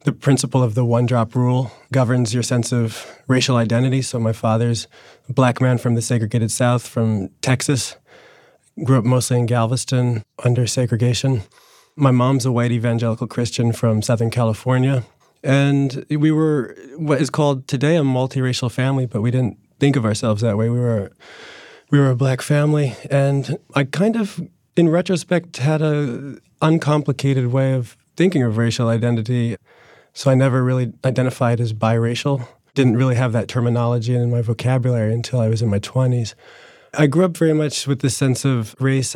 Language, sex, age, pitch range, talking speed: English, male, 30-49, 120-135 Hz, 170 wpm